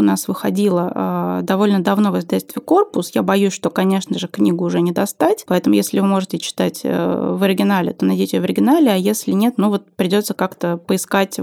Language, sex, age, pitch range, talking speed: Russian, female, 20-39, 190-230 Hz, 190 wpm